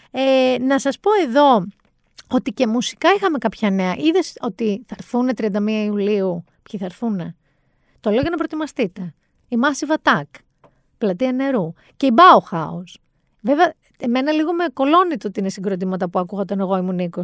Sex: female